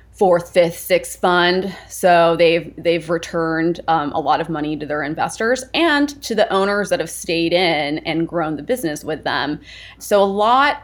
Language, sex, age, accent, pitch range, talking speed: English, female, 20-39, American, 160-185 Hz, 185 wpm